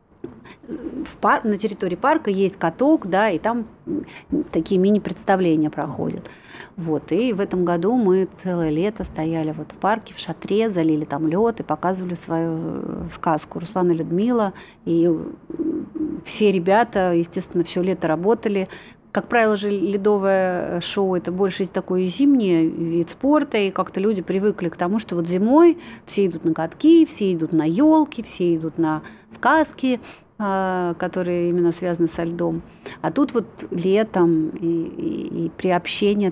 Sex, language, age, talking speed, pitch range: female, Russian, 30-49, 145 wpm, 170-210 Hz